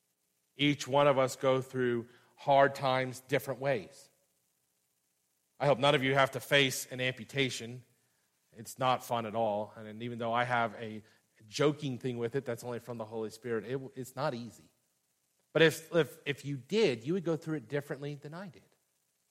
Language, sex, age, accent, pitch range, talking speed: English, male, 40-59, American, 105-145 Hz, 180 wpm